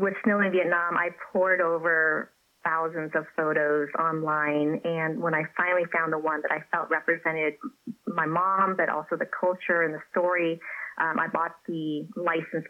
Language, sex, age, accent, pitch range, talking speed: English, female, 30-49, American, 160-190 Hz, 170 wpm